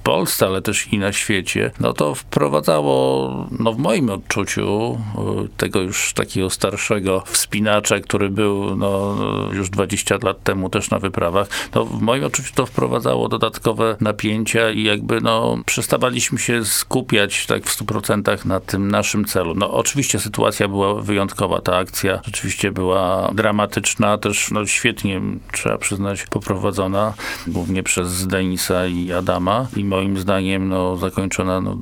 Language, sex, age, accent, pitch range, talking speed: Polish, male, 50-69, native, 95-110 Hz, 140 wpm